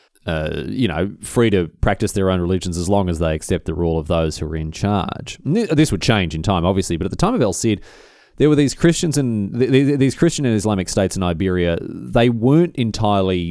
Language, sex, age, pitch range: English, male, 30-49, 90-125 Hz